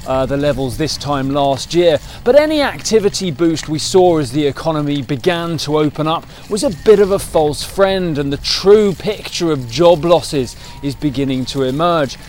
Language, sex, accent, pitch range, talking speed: English, male, British, 140-195 Hz, 185 wpm